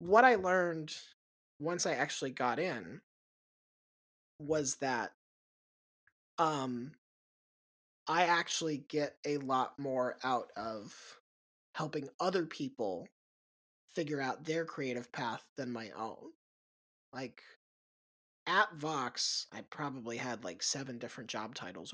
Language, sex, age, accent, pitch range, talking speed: English, male, 20-39, American, 130-165 Hz, 110 wpm